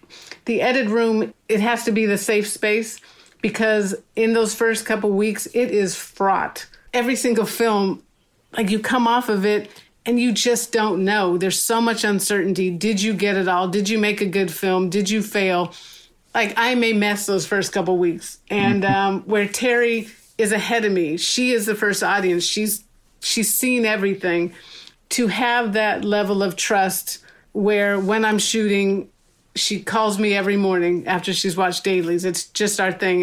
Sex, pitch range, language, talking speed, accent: female, 190-220 Hz, English, 180 wpm, American